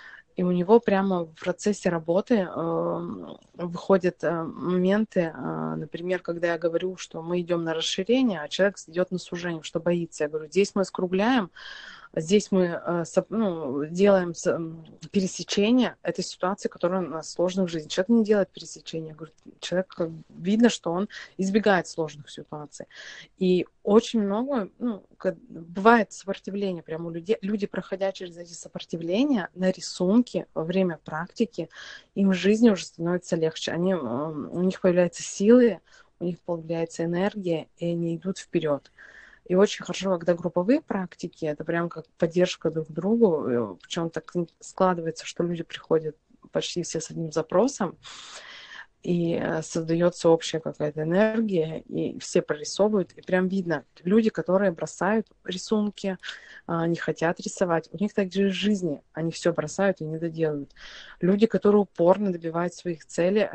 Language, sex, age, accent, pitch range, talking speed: Russian, female, 20-39, native, 165-195 Hz, 145 wpm